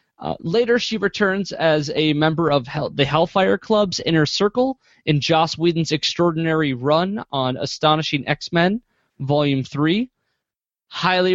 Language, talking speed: English, 125 wpm